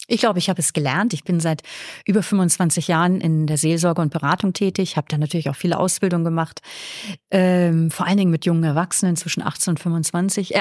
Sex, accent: female, German